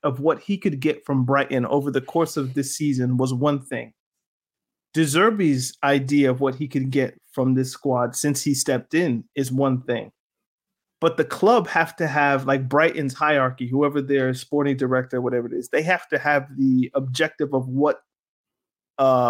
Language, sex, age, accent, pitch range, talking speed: English, male, 30-49, American, 135-170 Hz, 180 wpm